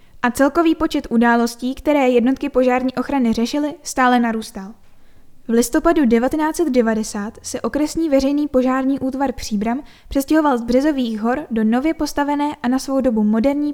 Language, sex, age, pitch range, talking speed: Czech, female, 10-29, 235-280 Hz, 140 wpm